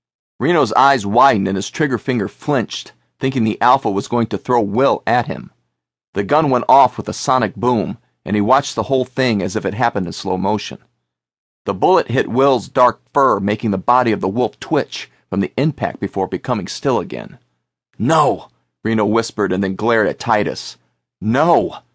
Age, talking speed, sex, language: 40-59, 185 wpm, male, English